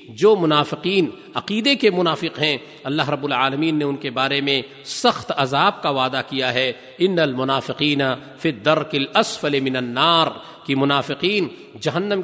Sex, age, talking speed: male, 50-69, 140 wpm